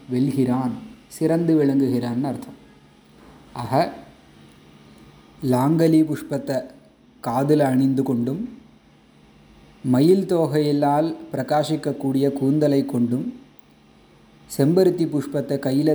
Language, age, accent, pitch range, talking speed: Tamil, 30-49, native, 125-150 Hz, 70 wpm